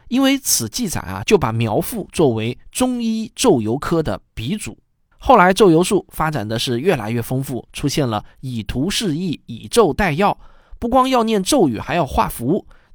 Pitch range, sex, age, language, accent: 120-170 Hz, male, 20-39, Chinese, native